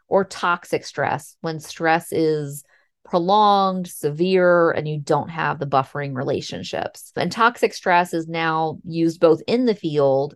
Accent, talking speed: American, 145 wpm